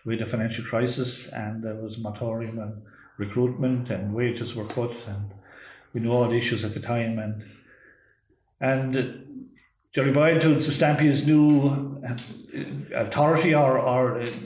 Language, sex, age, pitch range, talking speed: English, male, 50-69, 110-130 Hz, 145 wpm